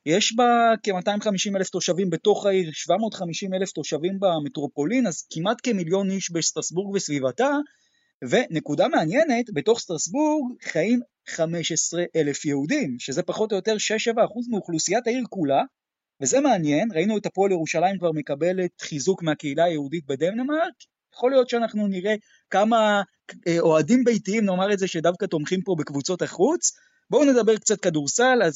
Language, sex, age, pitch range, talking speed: Hebrew, male, 30-49, 155-225 Hz, 140 wpm